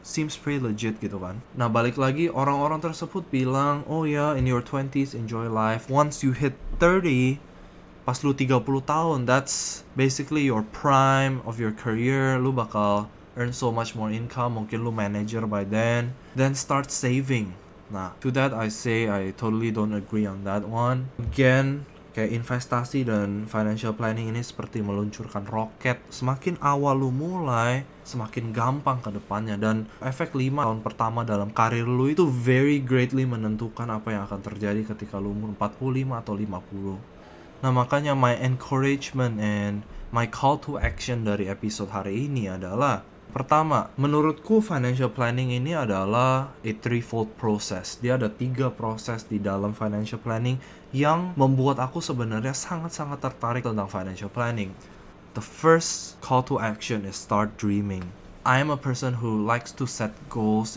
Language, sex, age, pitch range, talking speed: English, male, 20-39, 110-135 Hz, 155 wpm